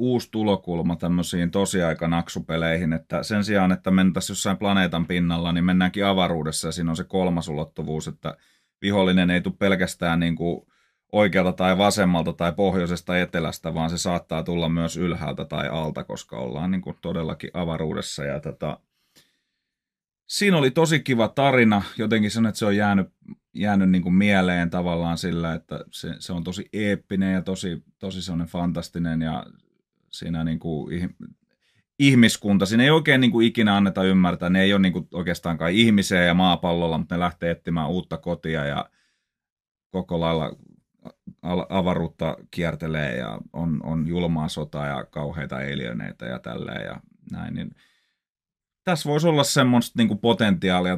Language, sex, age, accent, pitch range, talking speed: Finnish, male, 30-49, native, 85-100 Hz, 155 wpm